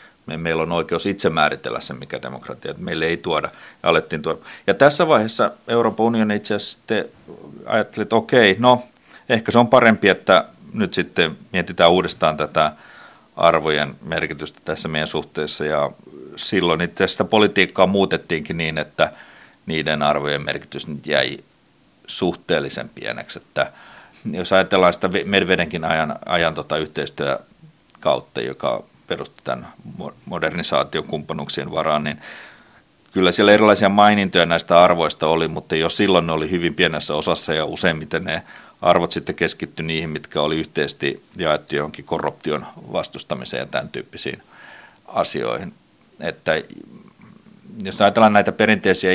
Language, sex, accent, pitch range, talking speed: Finnish, male, native, 80-105 Hz, 130 wpm